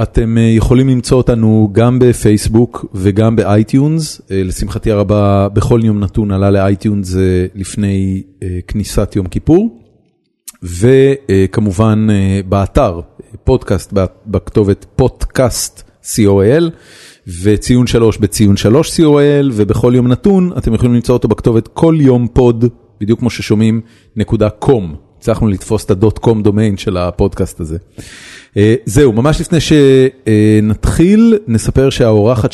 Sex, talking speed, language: male, 105 wpm, Hebrew